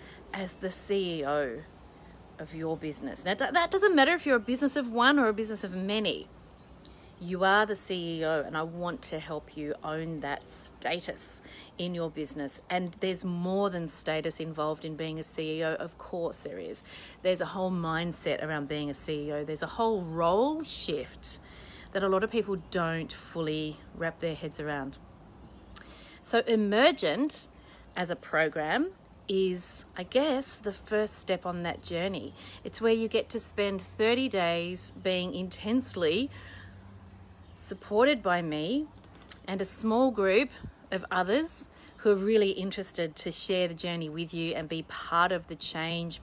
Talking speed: 160 wpm